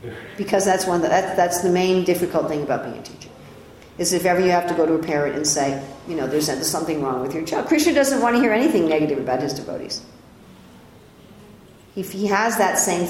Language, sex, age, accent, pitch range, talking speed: English, female, 50-69, American, 155-200 Hz, 225 wpm